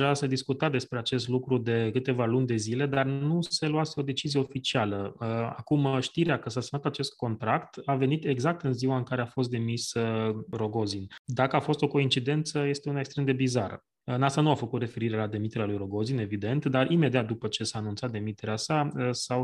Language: Romanian